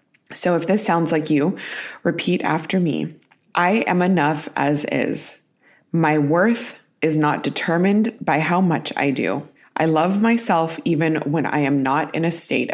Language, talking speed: English, 165 wpm